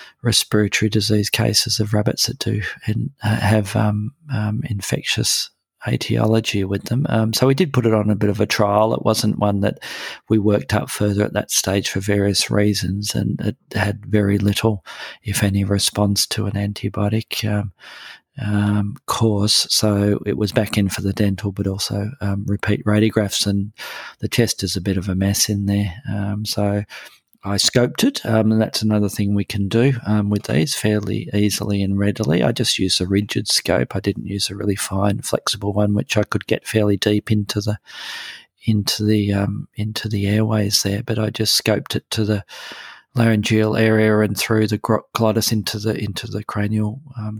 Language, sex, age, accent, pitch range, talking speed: English, male, 40-59, Australian, 100-110 Hz, 185 wpm